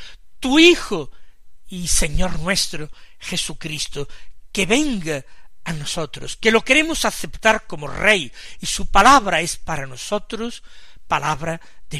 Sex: male